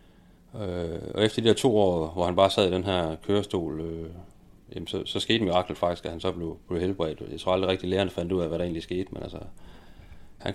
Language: Danish